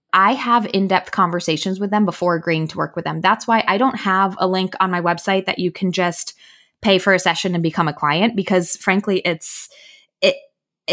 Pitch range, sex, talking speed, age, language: 185-230 Hz, female, 210 wpm, 20-39, English